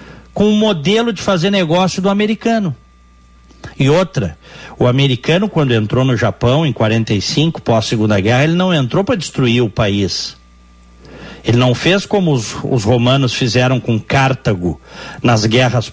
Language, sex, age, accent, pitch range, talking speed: Portuguese, male, 60-79, Brazilian, 110-160 Hz, 155 wpm